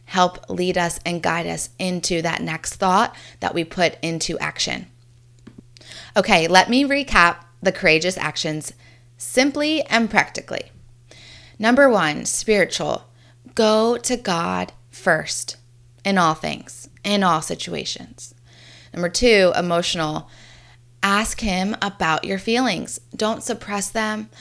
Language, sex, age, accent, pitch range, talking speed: English, female, 20-39, American, 125-195 Hz, 120 wpm